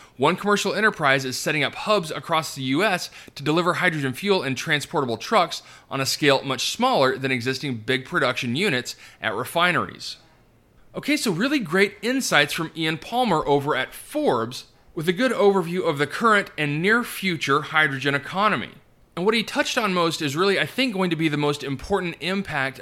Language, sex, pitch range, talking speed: English, male, 135-195 Hz, 180 wpm